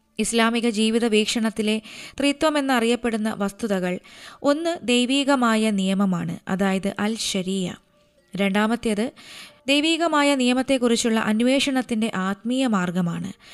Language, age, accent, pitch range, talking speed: Malayalam, 20-39, native, 205-260 Hz, 75 wpm